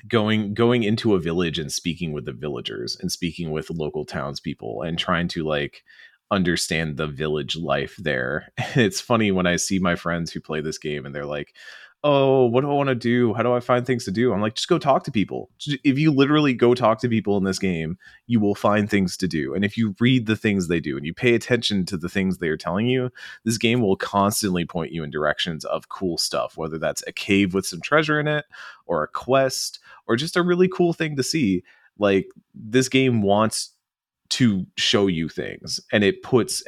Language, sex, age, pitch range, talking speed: English, male, 30-49, 85-125 Hz, 225 wpm